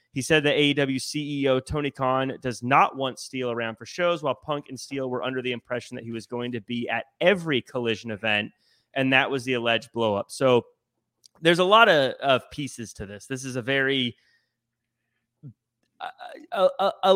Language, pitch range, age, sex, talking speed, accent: English, 120-150 Hz, 30-49, male, 185 wpm, American